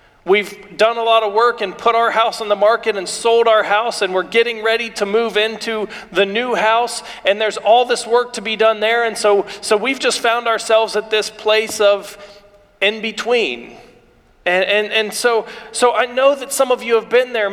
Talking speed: 210 wpm